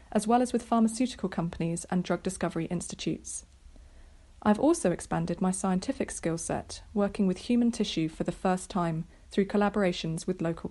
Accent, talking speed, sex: British, 160 wpm, female